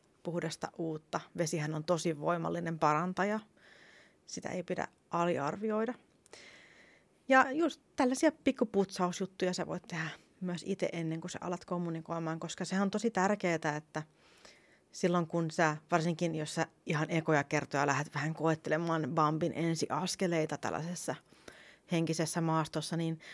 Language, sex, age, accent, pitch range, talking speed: Finnish, female, 30-49, native, 150-180 Hz, 125 wpm